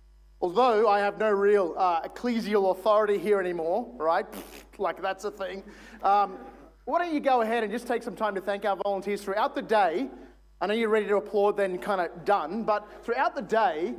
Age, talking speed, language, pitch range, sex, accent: 30-49, 200 wpm, English, 205-250 Hz, male, Australian